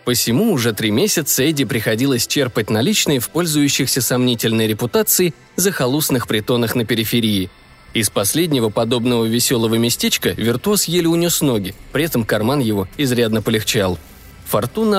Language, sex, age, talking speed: Russian, male, 20-39, 130 wpm